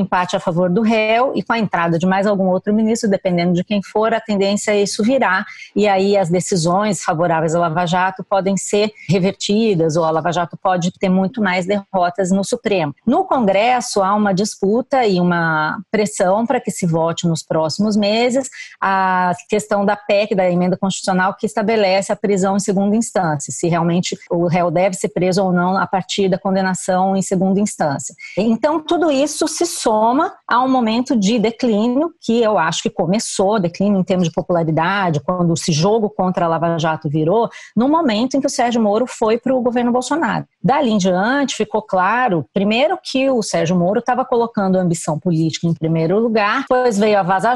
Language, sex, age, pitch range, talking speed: Portuguese, female, 30-49, 180-225 Hz, 195 wpm